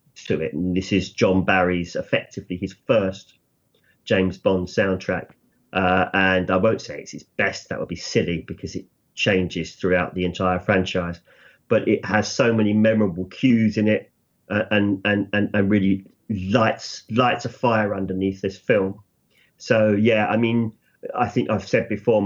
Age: 40-59